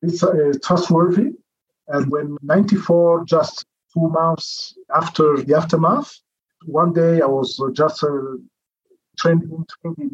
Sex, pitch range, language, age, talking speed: male, 140-170 Hz, English, 50-69, 105 wpm